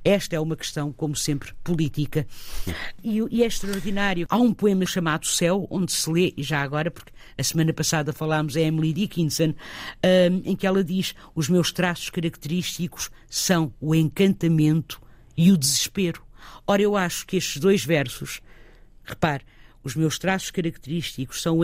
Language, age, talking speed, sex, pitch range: Portuguese, 50-69, 165 wpm, female, 145-175 Hz